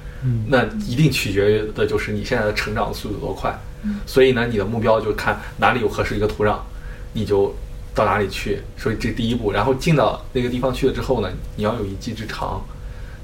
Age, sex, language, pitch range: 20-39, male, Chinese, 105-125 Hz